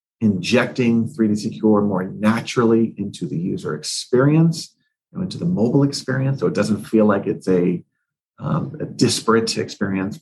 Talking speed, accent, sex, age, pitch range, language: 145 wpm, American, male, 40-59, 105-145 Hz, English